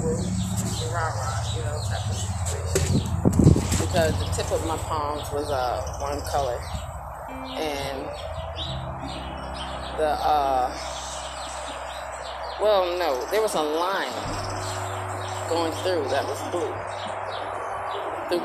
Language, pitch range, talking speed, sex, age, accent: English, 95-125 Hz, 80 wpm, female, 20-39, American